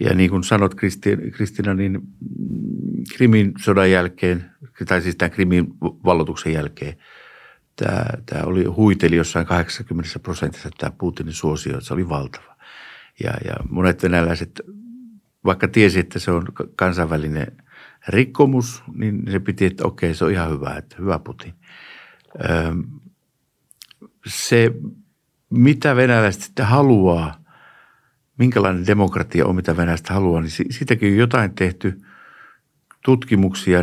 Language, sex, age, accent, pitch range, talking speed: Finnish, male, 60-79, native, 85-110 Hz, 120 wpm